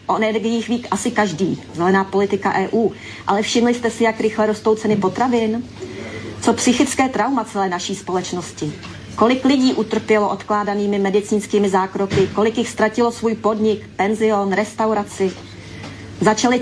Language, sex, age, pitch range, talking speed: Slovak, female, 30-49, 195-225 Hz, 130 wpm